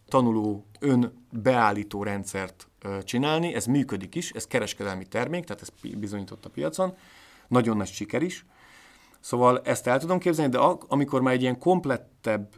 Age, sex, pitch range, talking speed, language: 30-49, male, 105-140 Hz, 145 wpm, Hungarian